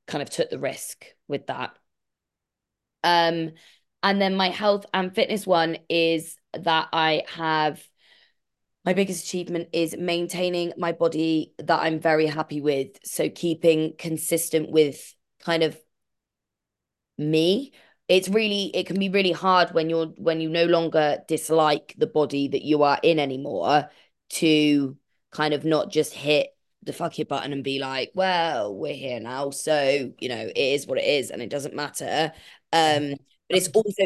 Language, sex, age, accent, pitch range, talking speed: English, female, 20-39, British, 155-180 Hz, 160 wpm